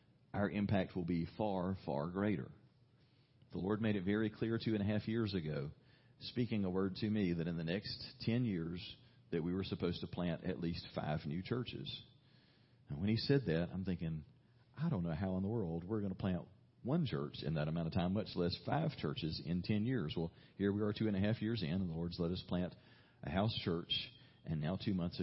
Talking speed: 230 wpm